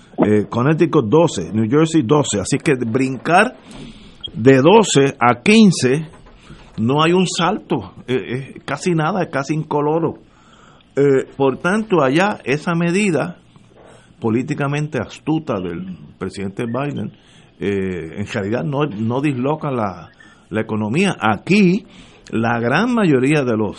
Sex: male